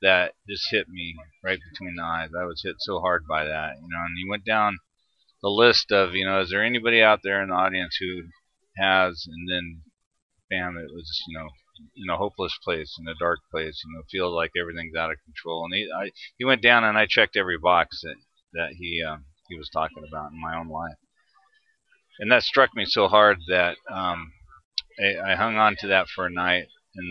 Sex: male